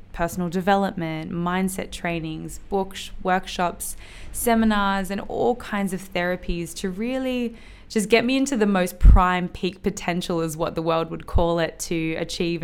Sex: female